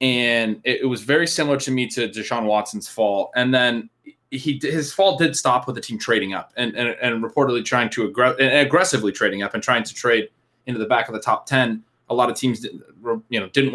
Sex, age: male, 20-39